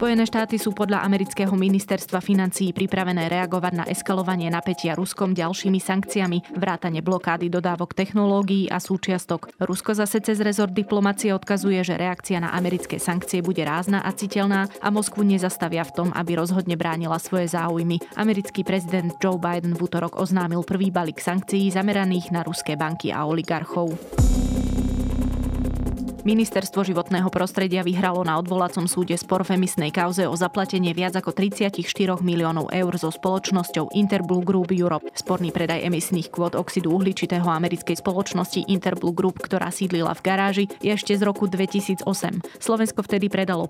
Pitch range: 170-195 Hz